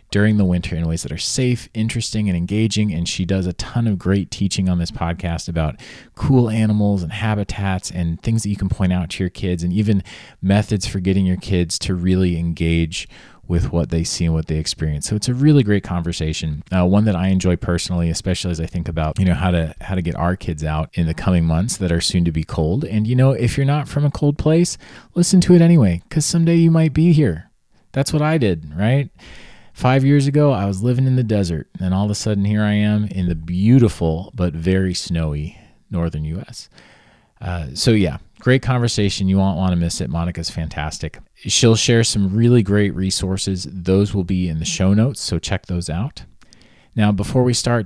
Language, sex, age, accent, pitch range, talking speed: English, male, 30-49, American, 85-110 Hz, 220 wpm